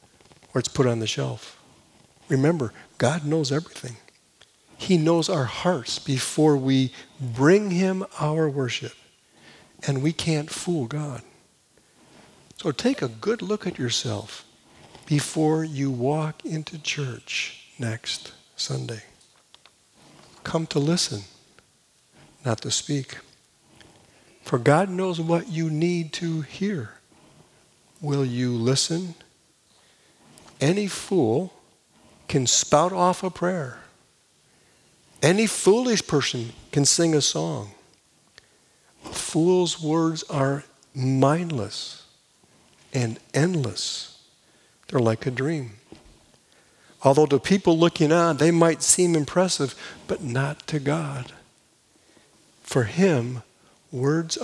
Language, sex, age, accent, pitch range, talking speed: English, male, 60-79, American, 130-170 Hz, 105 wpm